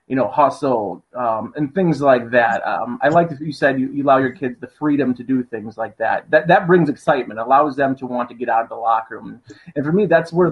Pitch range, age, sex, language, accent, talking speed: 125-150 Hz, 30-49, male, English, American, 260 wpm